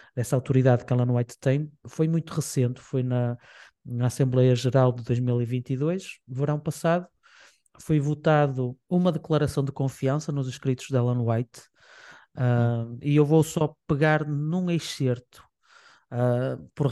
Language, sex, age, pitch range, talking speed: Portuguese, male, 20-39, 125-150 Hz, 135 wpm